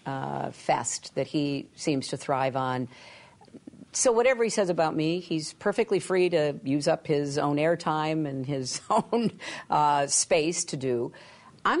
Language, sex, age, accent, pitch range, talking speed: English, female, 50-69, American, 145-185 Hz, 160 wpm